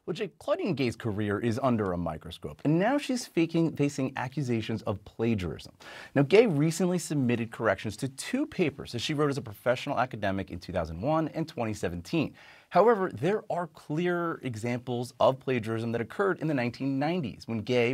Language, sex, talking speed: English, male, 165 wpm